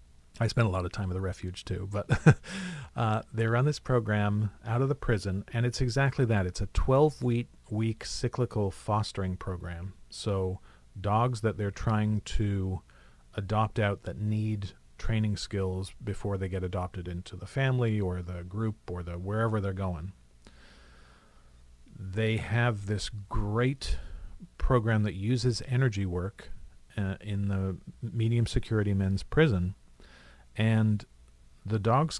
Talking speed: 145 wpm